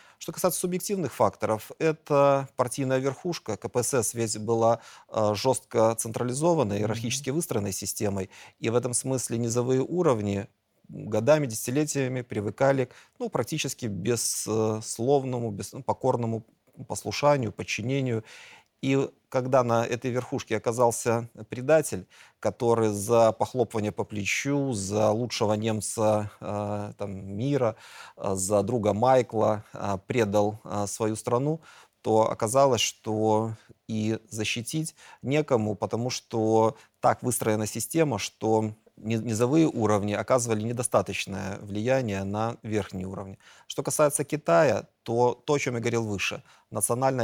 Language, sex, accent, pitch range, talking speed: Russian, male, native, 105-130 Hz, 105 wpm